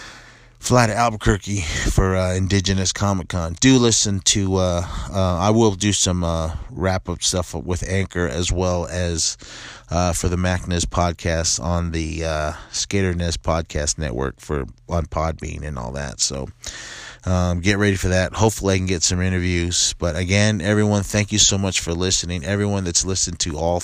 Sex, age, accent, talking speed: male, 30-49, American, 175 wpm